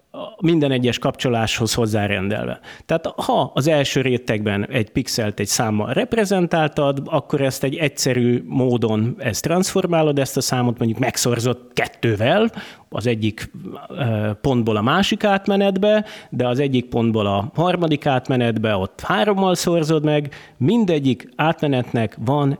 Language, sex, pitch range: Hungarian, male, 115-165 Hz